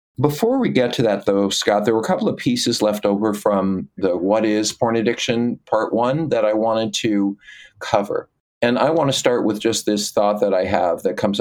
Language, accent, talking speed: English, American, 220 wpm